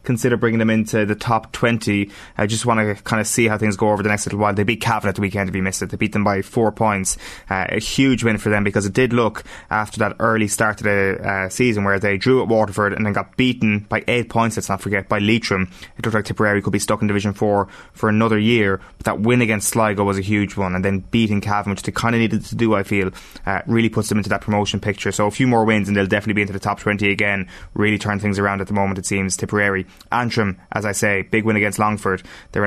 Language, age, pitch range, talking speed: English, 20-39, 100-110 Hz, 270 wpm